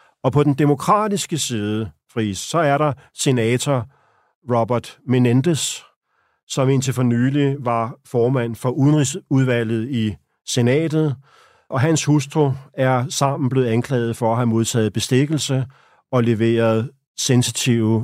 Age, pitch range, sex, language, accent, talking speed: 40-59, 115-140 Hz, male, Danish, native, 125 wpm